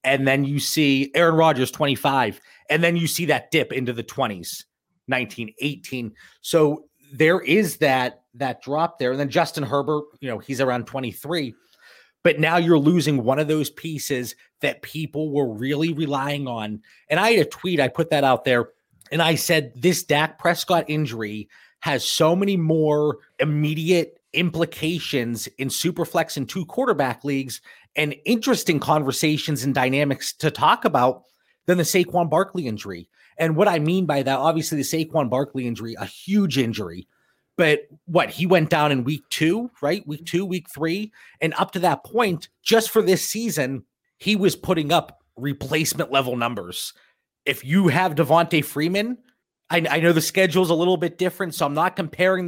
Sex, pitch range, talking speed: male, 135-175 Hz, 175 wpm